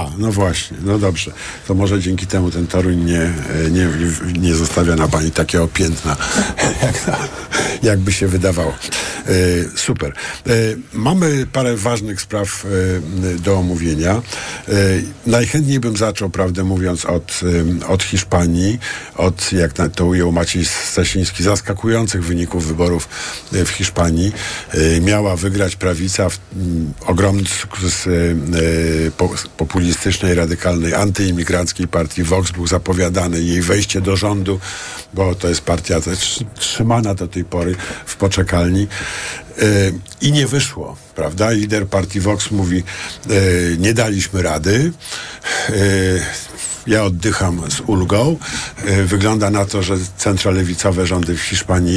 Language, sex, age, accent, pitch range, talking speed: Polish, male, 50-69, native, 85-100 Hz, 130 wpm